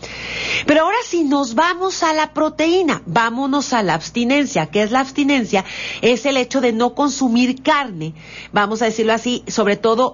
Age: 40-59